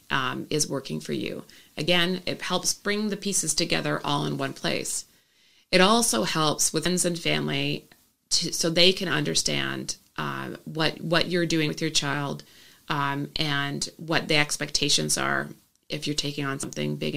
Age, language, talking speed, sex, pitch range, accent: 30-49, English, 165 wpm, female, 105-165 Hz, American